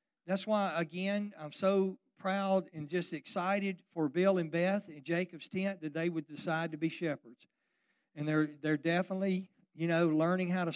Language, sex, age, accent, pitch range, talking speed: English, male, 50-69, American, 160-210 Hz, 180 wpm